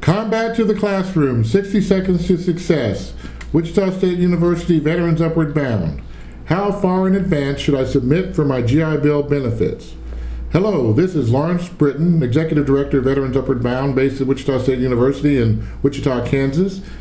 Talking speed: 160 wpm